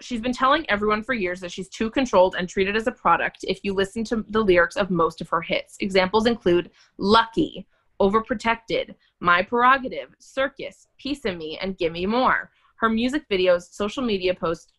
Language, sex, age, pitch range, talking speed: English, female, 20-39, 180-230 Hz, 185 wpm